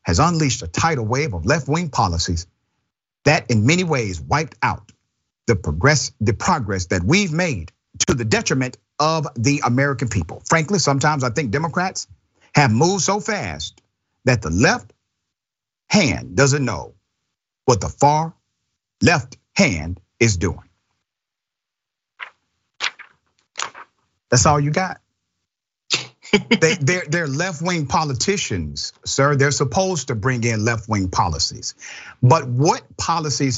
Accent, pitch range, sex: American, 105-150 Hz, male